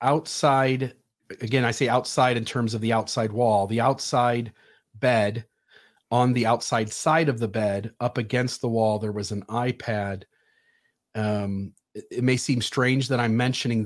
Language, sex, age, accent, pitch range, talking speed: English, male, 40-59, American, 110-130 Hz, 165 wpm